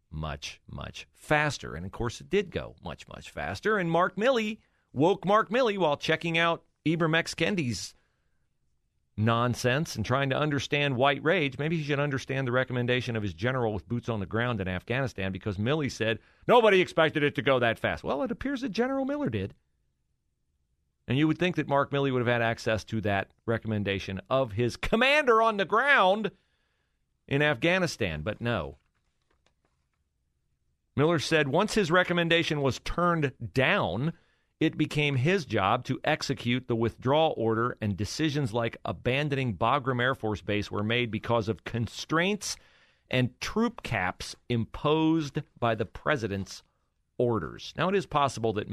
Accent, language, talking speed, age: American, English, 160 wpm, 40-59